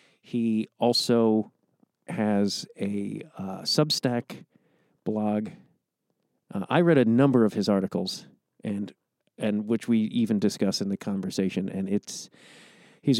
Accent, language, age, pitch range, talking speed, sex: American, English, 40-59, 110-155 Hz, 125 wpm, male